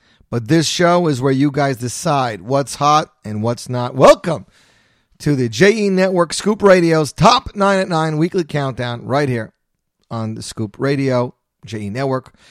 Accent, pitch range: American, 125-175 Hz